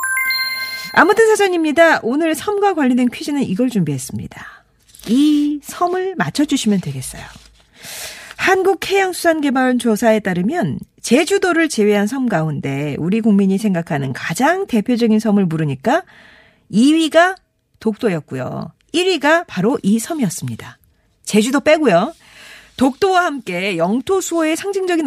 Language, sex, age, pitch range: Korean, female, 40-59, 185-310 Hz